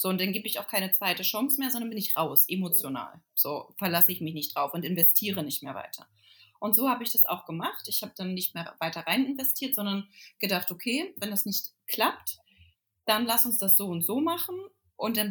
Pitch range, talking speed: 185-260 Hz, 225 wpm